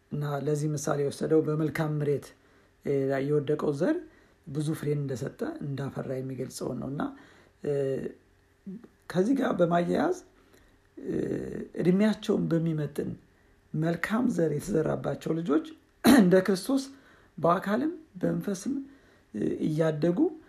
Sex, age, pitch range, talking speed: male, 60-79, 150-215 Hz, 80 wpm